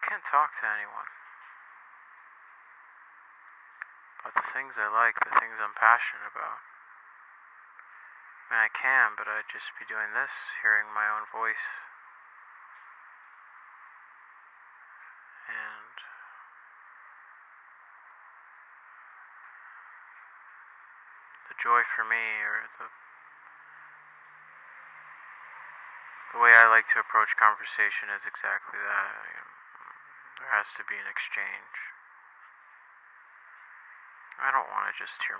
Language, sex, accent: Japanese, male, American